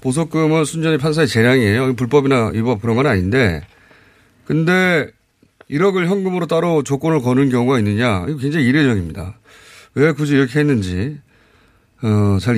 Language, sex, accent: Korean, male, native